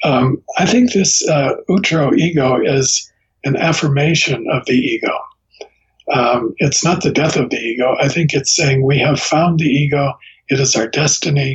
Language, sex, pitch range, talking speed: English, male, 110-155 Hz, 170 wpm